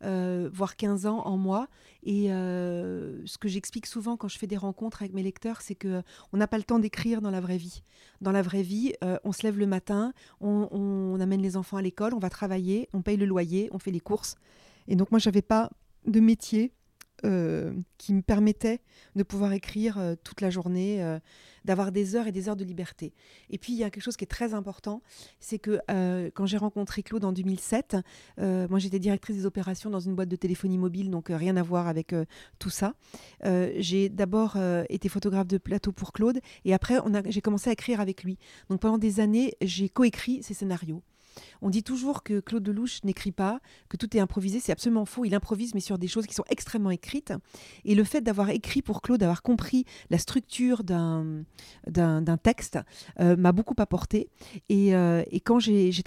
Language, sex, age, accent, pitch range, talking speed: French, female, 40-59, French, 185-215 Hz, 225 wpm